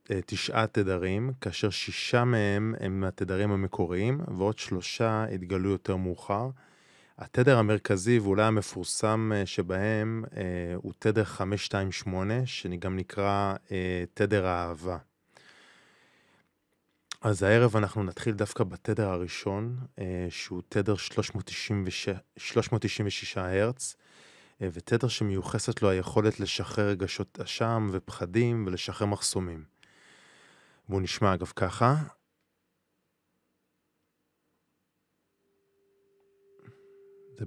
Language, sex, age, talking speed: Hebrew, male, 20-39, 85 wpm